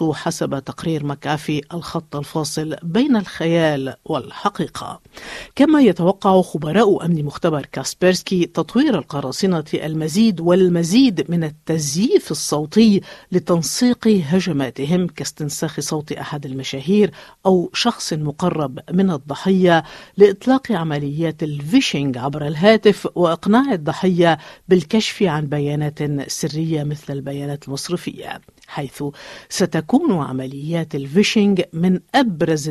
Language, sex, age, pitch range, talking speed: Arabic, female, 50-69, 145-190 Hz, 95 wpm